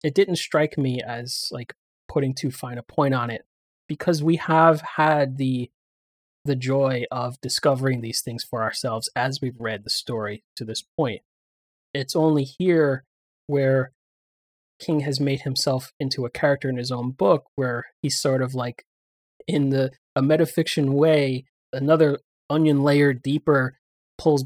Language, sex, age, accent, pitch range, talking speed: English, male, 30-49, American, 125-150 Hz, 155 wpm